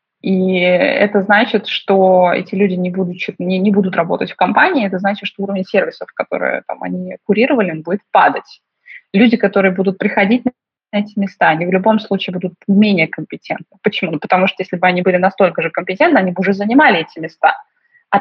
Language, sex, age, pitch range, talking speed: Russian, female, 20-39, 190-235 Hz, 180 wpm